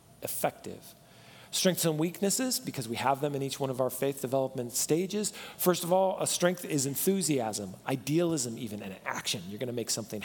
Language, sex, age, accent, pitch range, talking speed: English, male, 40-59, American, 130-175 Hz, 185 wpm